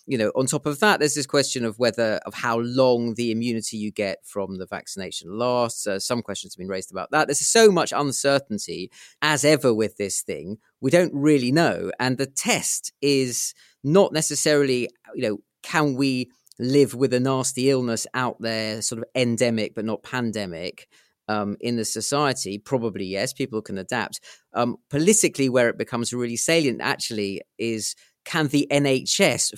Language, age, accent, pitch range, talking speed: English, 30-49, British, 105-135 Hz, 175 wpm